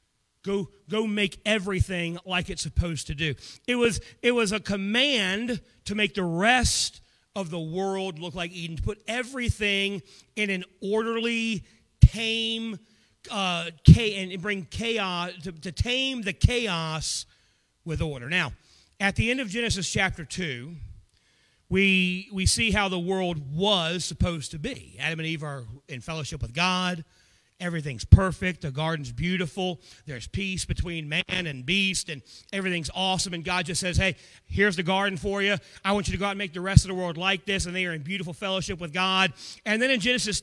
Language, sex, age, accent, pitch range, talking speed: English, male, 40-59, American, 160-205 Hz, 180 wpm